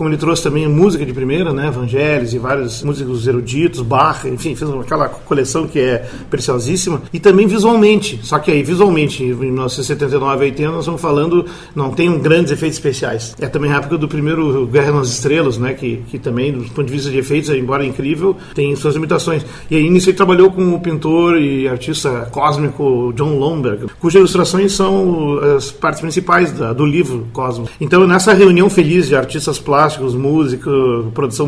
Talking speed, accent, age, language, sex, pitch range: 185 wpm, Brazilian, 40-59, Portuguese, male, 135-170 Hz